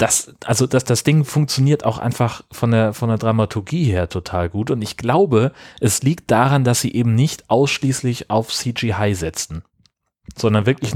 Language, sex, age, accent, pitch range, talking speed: German, male, 30-49, German, 110-130 Hz, 175 wpm